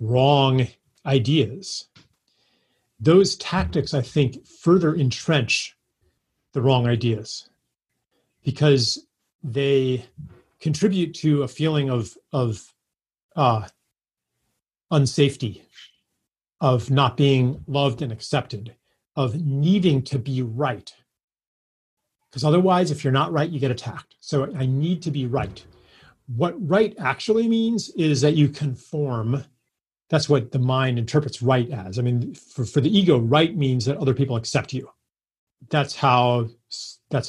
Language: English